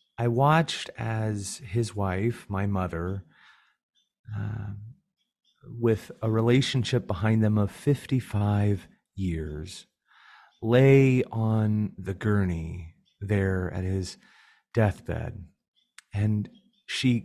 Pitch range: 100-135 Hz